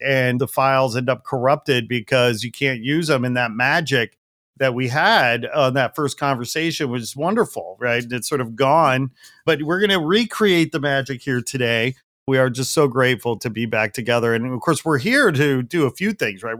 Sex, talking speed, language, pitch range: male, 210 wpm, English, 125-150 Hz